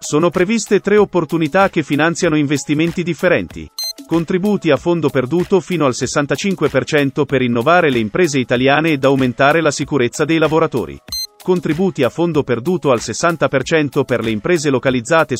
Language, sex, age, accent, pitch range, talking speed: Italian, male, 40-59, native, 130-170 Hz, 140 wpm